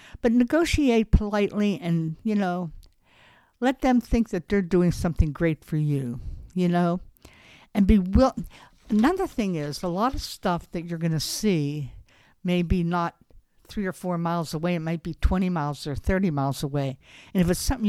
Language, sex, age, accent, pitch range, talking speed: English, female, 60-79, American, 150-210 Hz, 180 wpm